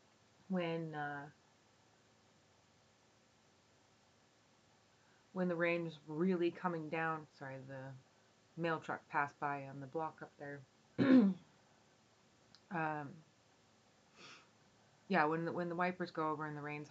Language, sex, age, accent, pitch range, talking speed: English, female, 30-49, American, 135-165 Hz, 115 wpm